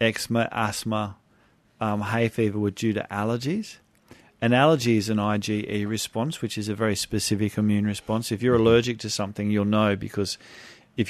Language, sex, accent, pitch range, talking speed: English, male, Australian, 105-115 Hz, 170 wpm